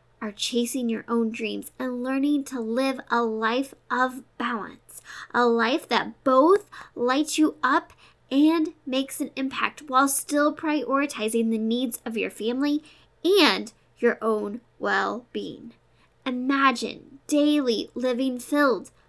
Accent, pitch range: American, 230-285 Hz